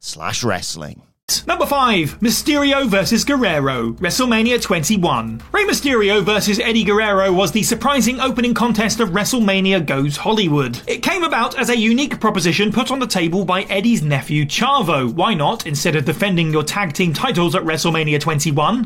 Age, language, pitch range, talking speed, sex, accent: 30-49, English, 175-230 Hz, 160 wpm, male, British